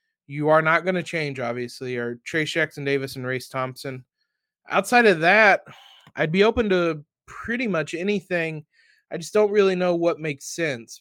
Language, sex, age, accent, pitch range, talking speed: English, male, 20-39, American, 140-175 Hz, 170 wpm